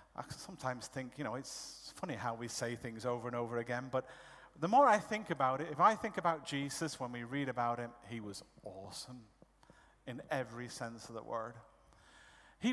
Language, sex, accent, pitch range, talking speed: Swedish, male, British, 130-165 Hz, 200 wpm